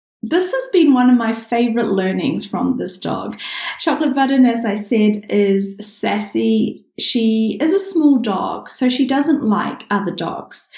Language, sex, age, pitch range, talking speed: English, female, 10-29, 205-275 Hz, 160 wpm